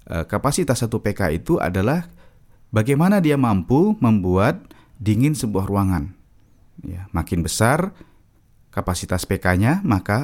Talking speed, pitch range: 100 wpm, 95-125 Hz